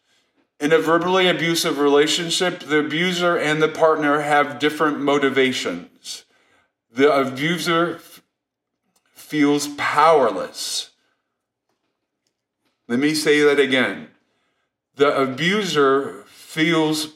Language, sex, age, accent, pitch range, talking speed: English, male, 40-59, American, 140-160 Hz, 85 wpm